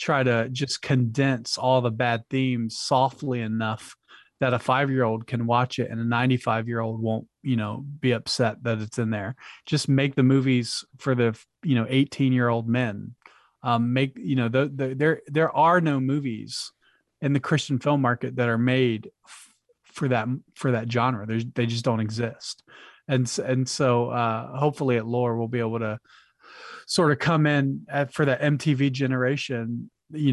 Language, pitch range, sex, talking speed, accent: English, 120-135 Hz, male, 175 wpm, American